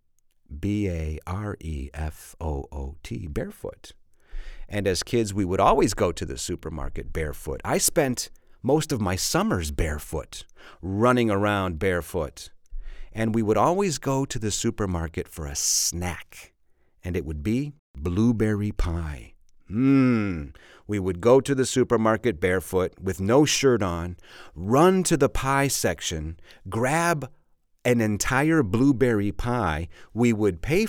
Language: English